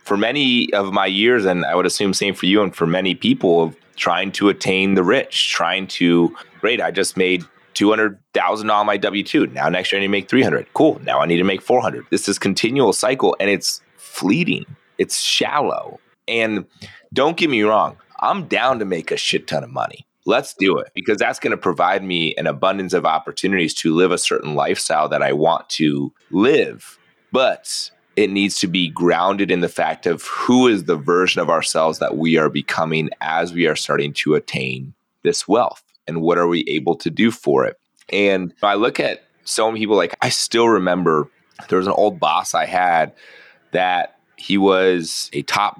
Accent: American